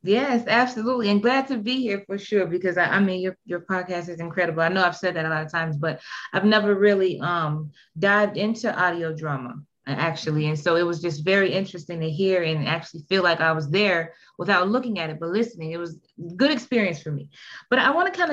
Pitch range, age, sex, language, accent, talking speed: 170-215 Hz, 20-39, female, English, American, 230 wpm